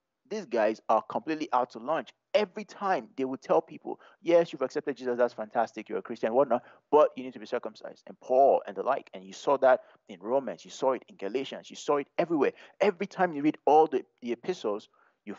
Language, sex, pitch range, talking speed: English, male, 120-185 Hz, 225 wpm